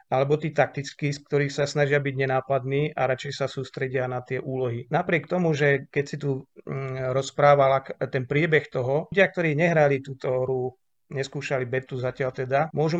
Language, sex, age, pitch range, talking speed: Slovak, male, 40-59, 135-155 Hz, 170 wpm